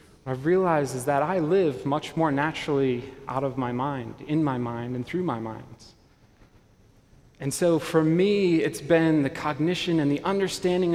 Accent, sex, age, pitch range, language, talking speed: American, male, 30-49, 130-165 Hz, English, 170 wpm